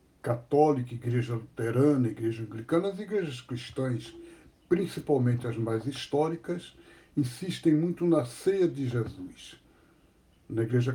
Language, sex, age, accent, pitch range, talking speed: Portuguese, male, 60-79, Brazilian, 125-170 Hz, 110 wpm